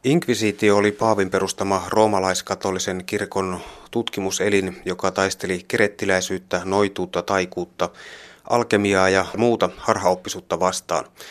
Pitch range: 95-105 Hz